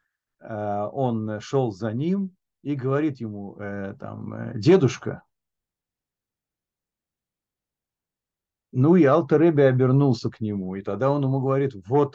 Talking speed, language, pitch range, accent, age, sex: 105 wpm, Russian, 110-145 Hz, native, 50-69, male